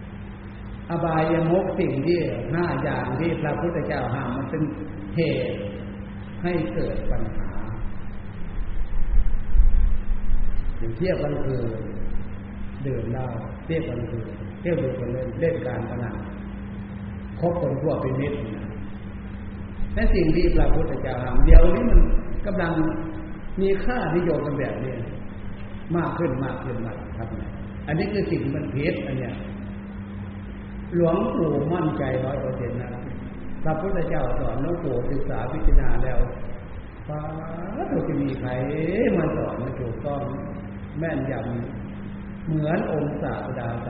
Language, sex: Thai, male